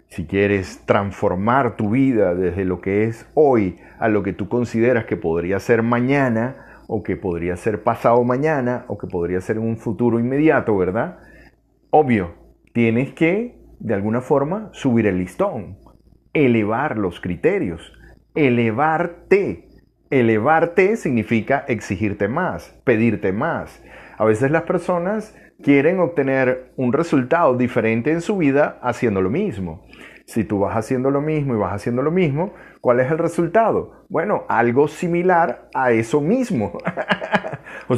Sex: male